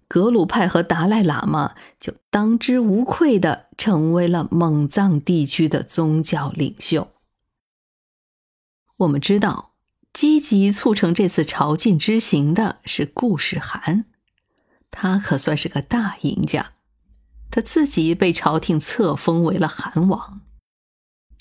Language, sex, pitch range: Chinese, female, 160-220 Hz